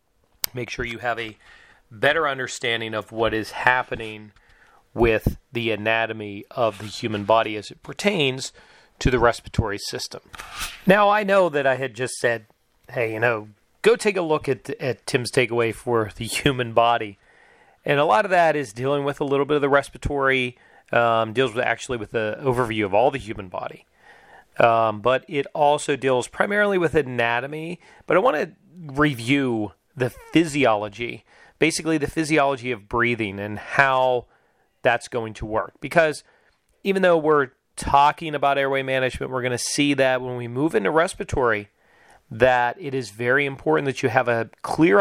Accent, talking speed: American, 170 wpm